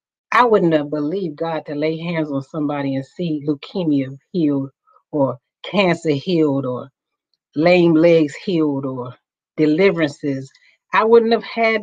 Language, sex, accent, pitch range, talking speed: English, female, American, 170-230 Hz, 135 wpm